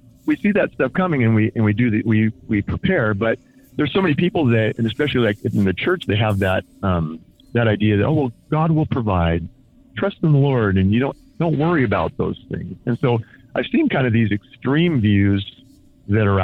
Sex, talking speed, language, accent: male, 225 wpm, English, American